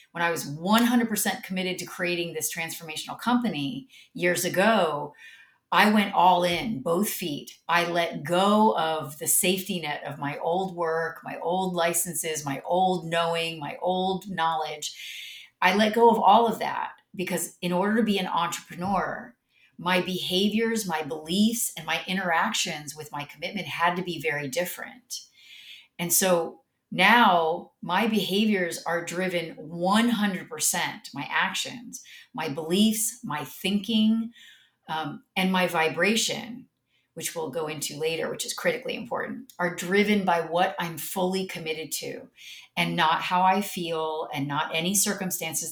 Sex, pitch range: female, 165-210 Hz